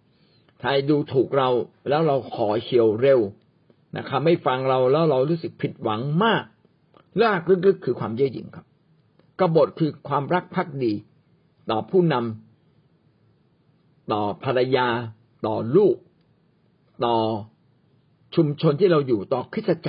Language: Thai